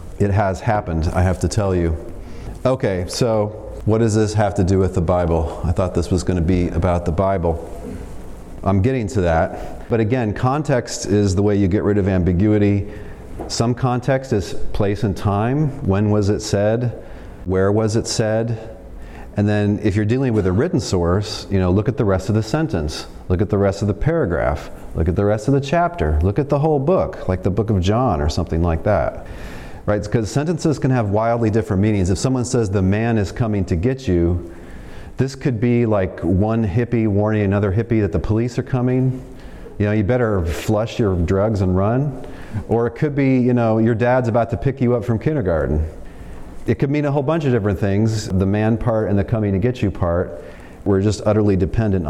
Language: English